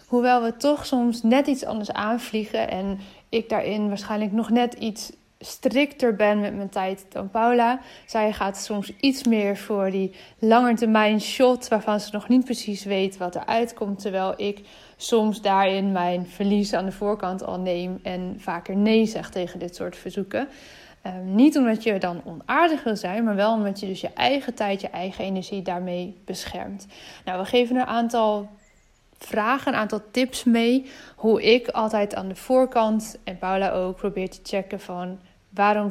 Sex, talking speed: female, 175 wpm